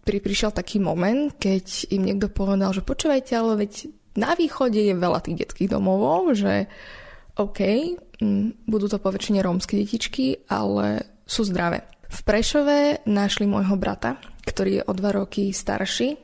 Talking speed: 145 wpm